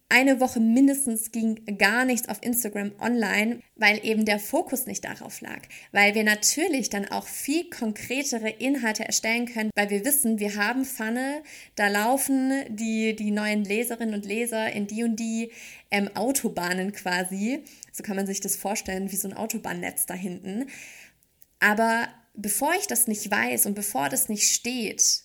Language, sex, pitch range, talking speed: German, female, 210-255 Hz, 165 wpm